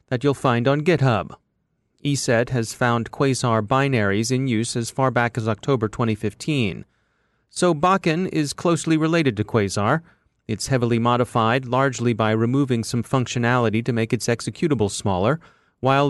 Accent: American